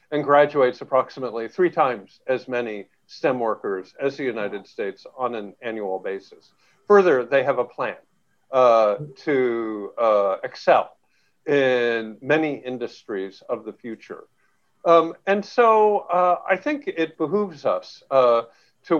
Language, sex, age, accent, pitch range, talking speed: English, male, 50-69, American, 125-175 Hz, 135 wpm